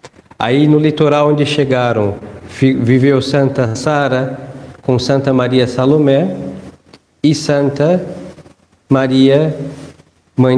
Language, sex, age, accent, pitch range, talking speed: Portuguese, male, 50-69, Brazilian, 130-155 Hz, 90 wpm